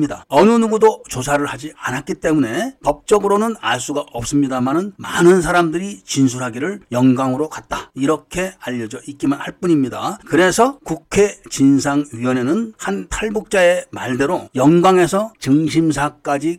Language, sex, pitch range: Korean, male, 135-190 Hz